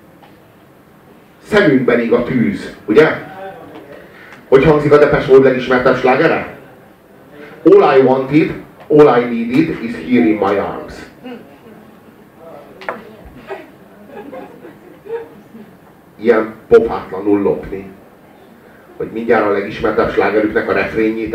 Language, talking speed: Hungarian, 90 wpm